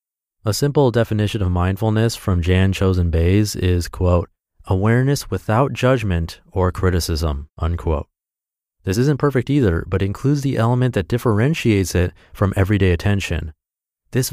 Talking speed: 135 wpm